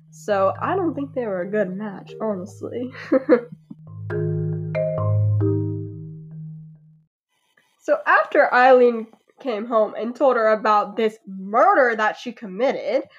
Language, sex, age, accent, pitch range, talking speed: English, female, 10-29, American, 210-290 Hz, 110 wpm